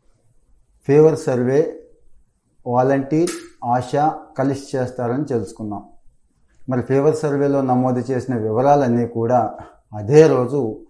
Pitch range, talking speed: 115-135 Hz, 90 wpm